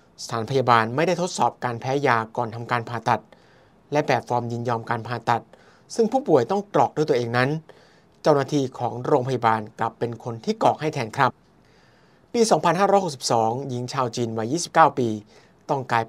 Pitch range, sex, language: 115-150 Hz, male, Thai